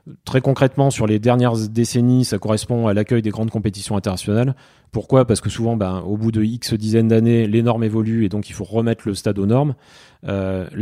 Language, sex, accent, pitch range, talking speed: French, male, French, 105-120 Hz, 210 wpm